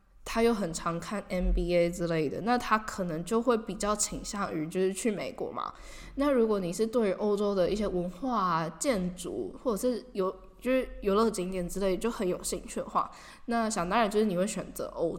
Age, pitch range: 10-29, 180-230 Hz